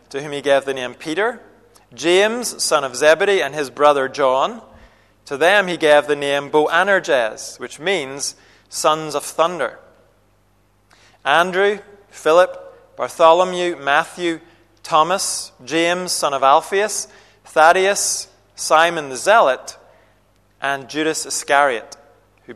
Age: 30-49